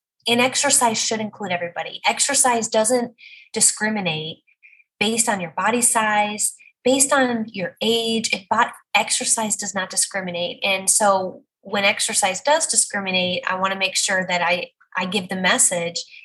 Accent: American